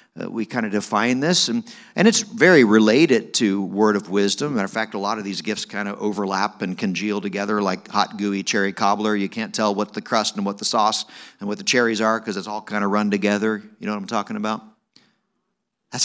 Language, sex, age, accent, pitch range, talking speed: English, male, 50-69, American, 105-150 Hz, 245 wpm